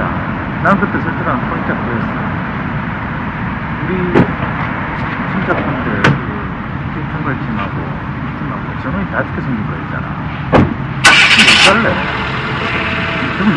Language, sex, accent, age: Korean, male, native, 40-59